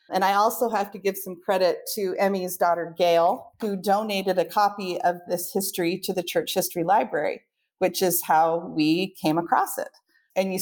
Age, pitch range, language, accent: 30-49, 175-200 Hz, English, American